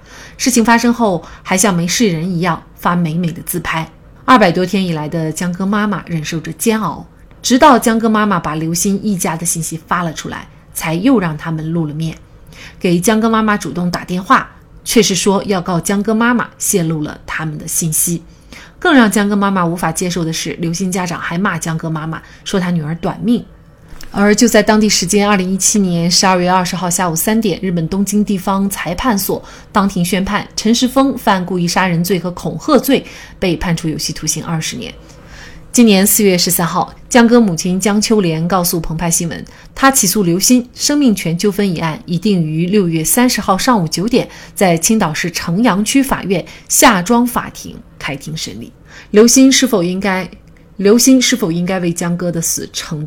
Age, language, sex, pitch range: 30-49, Chinese, female, 170-215 Hz